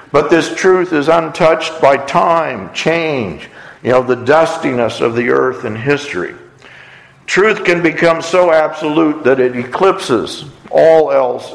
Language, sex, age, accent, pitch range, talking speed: English, male, 60-79, American, 130-170 Hz, 140 wpm